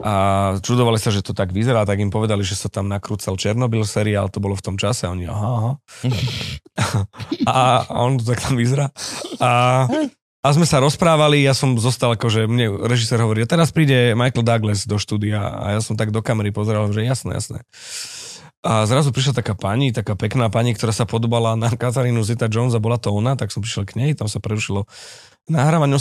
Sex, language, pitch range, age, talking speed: male, Slovak, 105-125 Hz, 30-49, 210 wpm